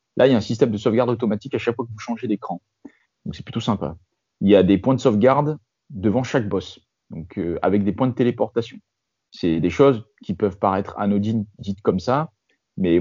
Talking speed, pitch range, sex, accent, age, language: 220 wpm, 105-130 Hz, male, French, 30-49, French